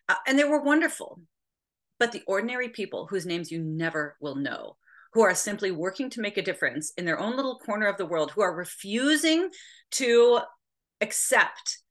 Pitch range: 160-230 Hz